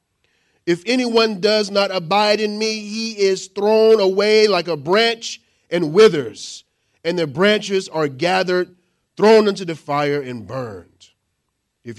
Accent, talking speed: American, 140 wpm